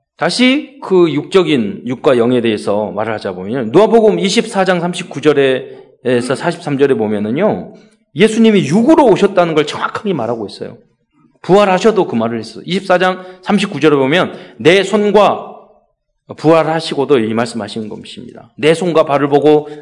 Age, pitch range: 40-59, 140-215 Hz